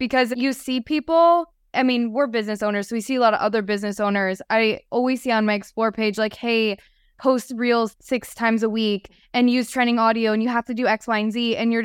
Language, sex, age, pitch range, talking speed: English, female, 20-39, 205-245 Hz, 245 wpm